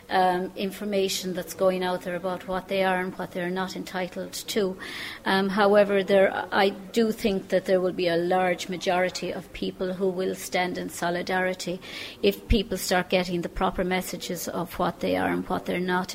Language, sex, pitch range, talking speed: English, female, 180-195 Hz, 190 wpm